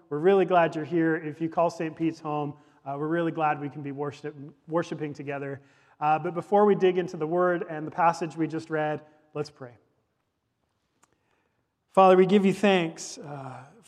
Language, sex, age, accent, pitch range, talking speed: English, male, 40-59, American, 135-160 Hz, 180 wpm